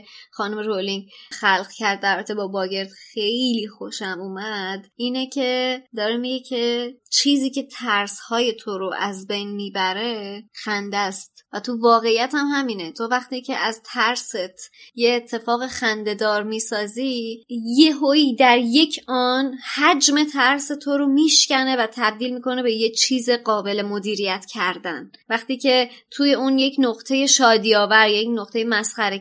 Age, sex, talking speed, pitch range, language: 20-39, male, 145 wpm, 215-260 Hz, Persian